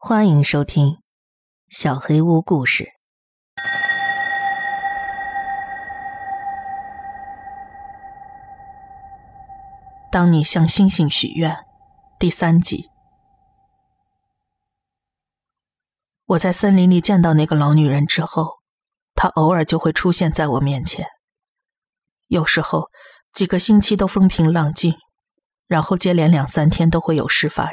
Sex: female